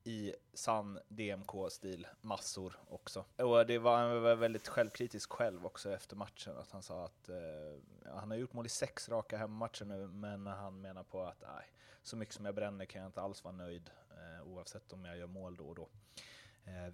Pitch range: 100-120 Hz